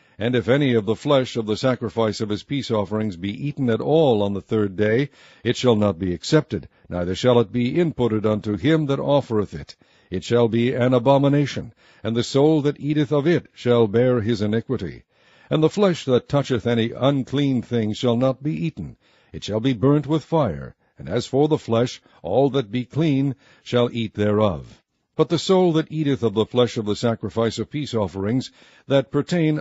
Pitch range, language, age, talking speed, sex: 110-140 Hz, English, 60-79, 195 wpm, male